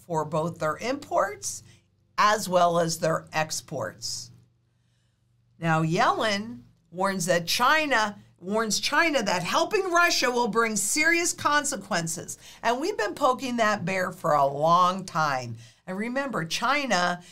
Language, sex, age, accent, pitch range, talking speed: English, female, 50-69, American, 170-255 Hz, 125 wpm